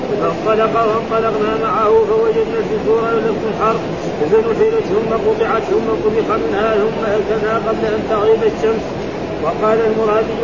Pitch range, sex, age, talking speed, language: 215-230 Hz, male, 40-59, 105 wpm, Arabic